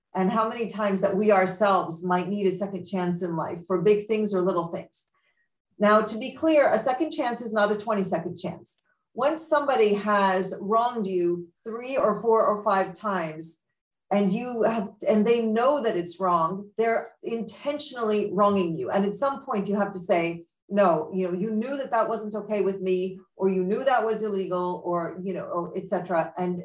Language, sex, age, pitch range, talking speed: English, female, 40-59, 190-230 Hz, 195 wpm